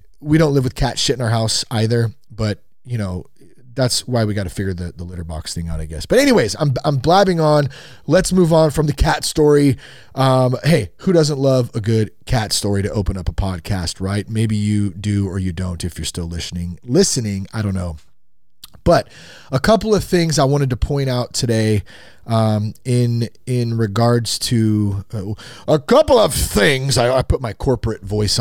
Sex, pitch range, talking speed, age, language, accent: male, 95-130 Hz, 205 wpm, 30-49, English, American